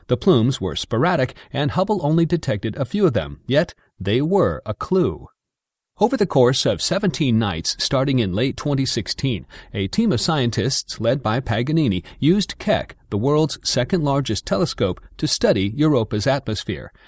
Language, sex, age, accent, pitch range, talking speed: English, male, 40-59, American, 115-155 Hz, 160 wpm